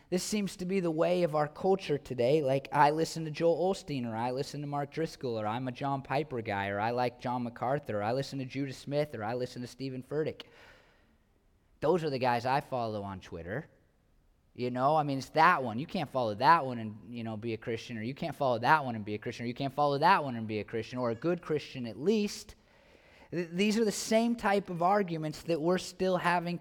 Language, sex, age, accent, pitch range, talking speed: English, male, 20-39, American, 140-190 Hz, 245 wpm